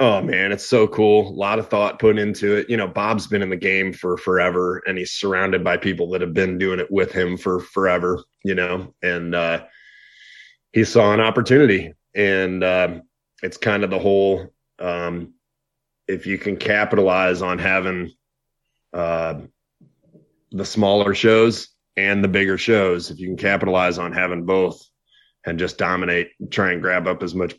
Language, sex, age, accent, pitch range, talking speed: English, male, 30-49, American, 90-105 Hz, 180 wpm